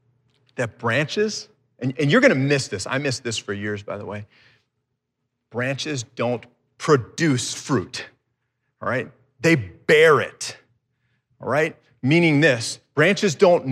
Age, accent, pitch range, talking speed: 30-49, American, 120-160 Hz, 135 wpm